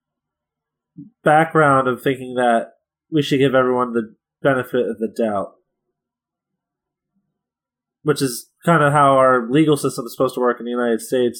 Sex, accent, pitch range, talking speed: male, American, 125-155 Hz, 155 wpm